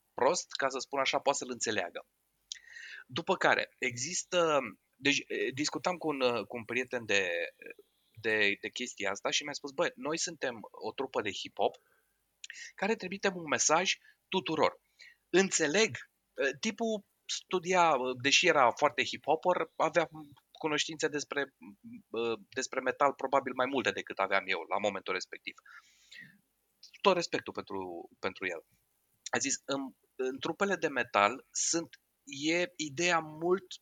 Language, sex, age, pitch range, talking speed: Romanian, male, 30-49, 125-170 Hz, 130 wpm